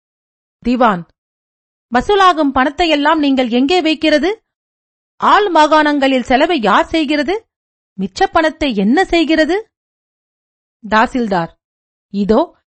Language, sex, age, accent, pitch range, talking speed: Tamil, female, 40-59, native, 235-315 Hz, 80 wpm